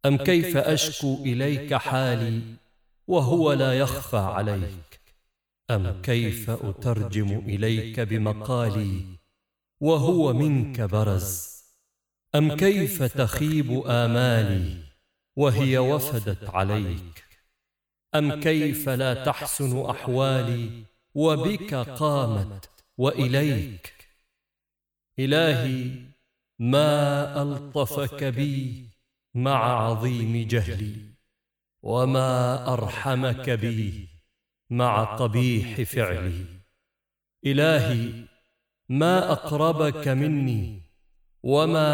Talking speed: 70 wpm